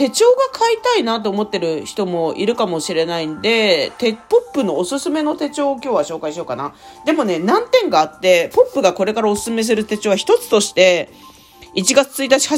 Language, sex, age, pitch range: Japanese, female, 40-59, 175-275 Hz